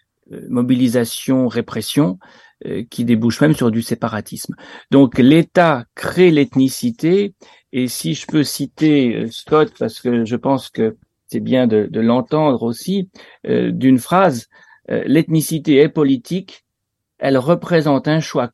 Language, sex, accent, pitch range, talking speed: French, male, French, 110-140 Hz, 125 wpm